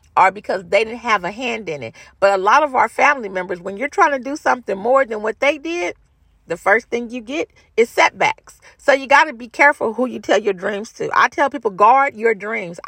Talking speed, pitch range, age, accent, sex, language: 240 wpm, 190-265 Hz, 40-59, American, female, English